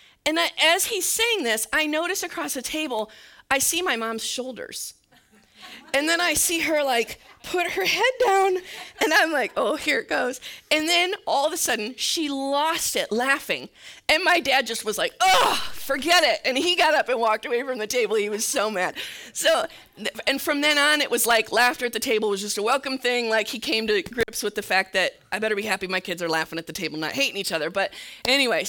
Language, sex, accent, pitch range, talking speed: English, female, American, 175-275 Hz, 225 wpm